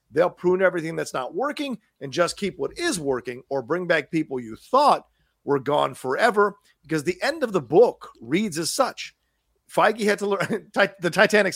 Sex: male